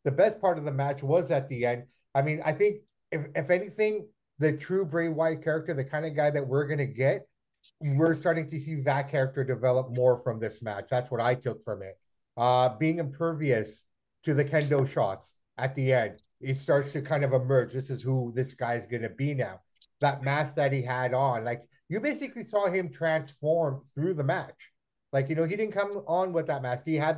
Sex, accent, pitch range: male, American, 130-175 Hz